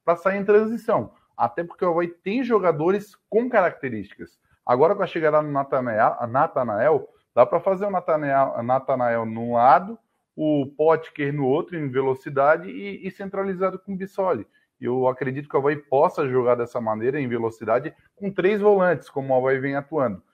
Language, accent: Portuguese, Brazilian